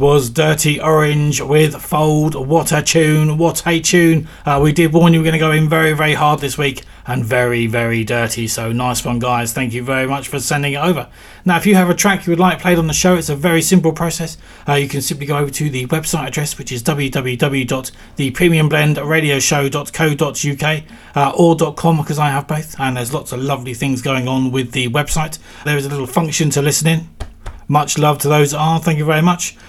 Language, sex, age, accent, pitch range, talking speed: English, male, 30-49, British, 130-160 Hz, 220 wpm